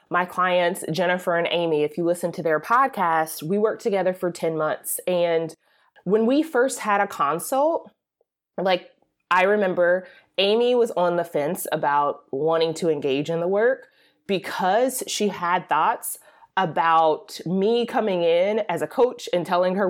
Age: 20-39